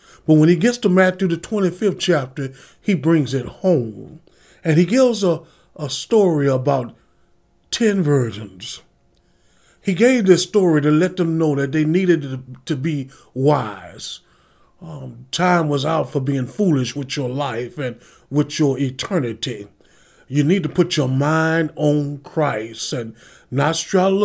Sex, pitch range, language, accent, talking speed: male, 125-175 Hz, English, American, 150 wpm